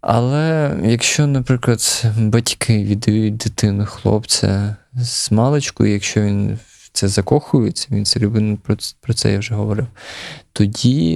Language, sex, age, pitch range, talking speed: Ukrainian, male, 20-39, 105-120 Hz, 120 wpm